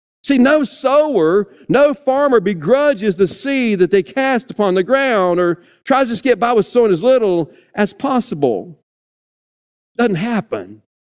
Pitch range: 175-235 Hz